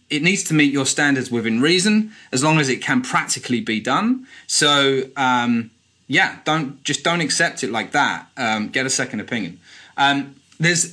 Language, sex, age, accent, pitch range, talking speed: English, male, 30-49, British, 115-155 Hz, 180 wpm